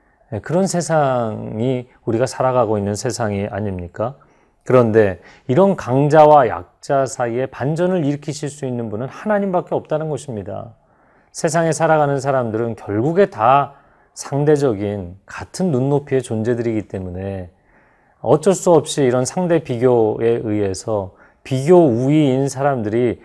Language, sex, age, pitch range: Korean, male, 40-59, 105-140 Hz